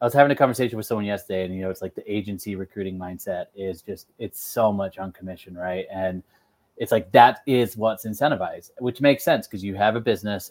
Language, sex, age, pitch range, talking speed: English, male, 20-39, 95-120 Hz, 230 wpm